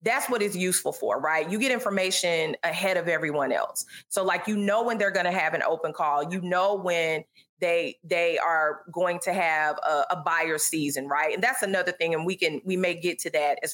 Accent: American